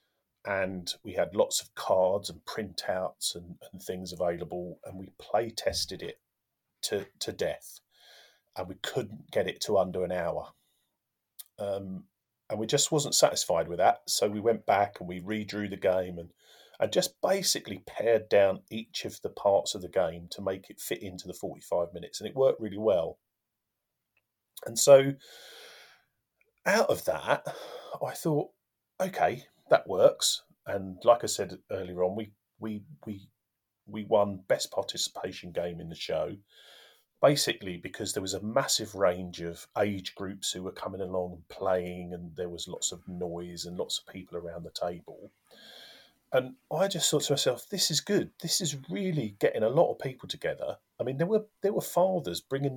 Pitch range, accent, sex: 90-135 Hz, British, male